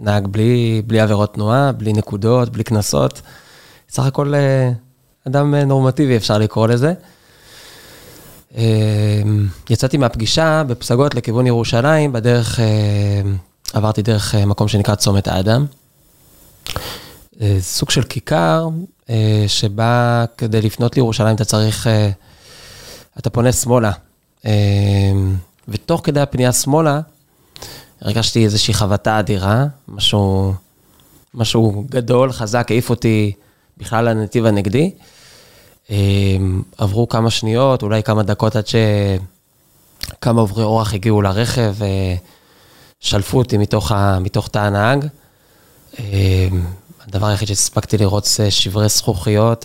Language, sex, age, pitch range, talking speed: Hebrew, male, 20-39, 100-120 Hz, 100 wpm